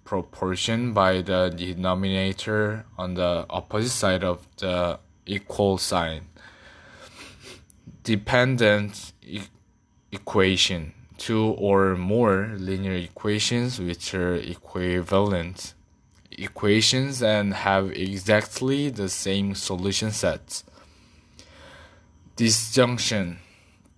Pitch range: 95-110 Hz